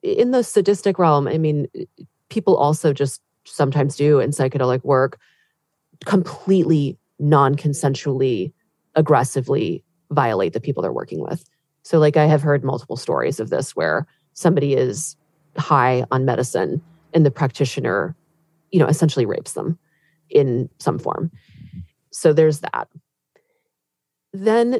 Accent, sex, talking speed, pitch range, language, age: American, female, 130 wpm, 140-200 Hz, English, 30-49